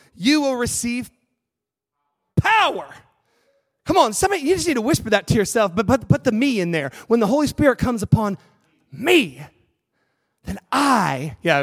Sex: male